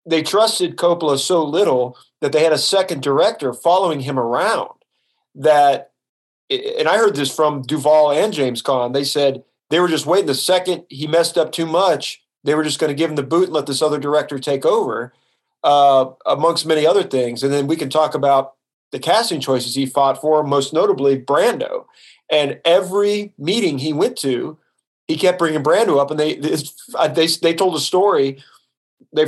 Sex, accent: male, American